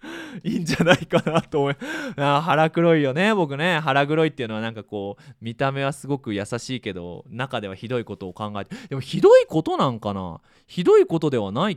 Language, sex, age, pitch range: Japanese, male, 20-39, 115-195 Hz